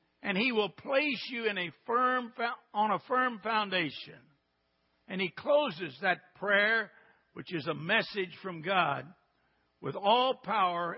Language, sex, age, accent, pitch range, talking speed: English, male, 60-79, American, 155-235 Hz, 140 wpm